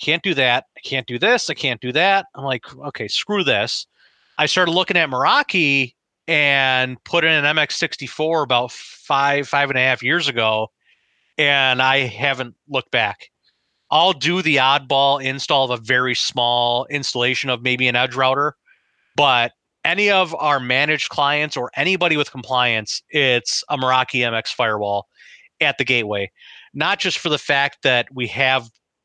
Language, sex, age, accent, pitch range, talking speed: English, male, 30-49, American, 125-150 Hz, 165 wpm